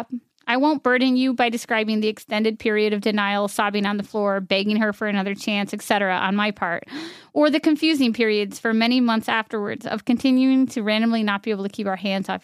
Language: English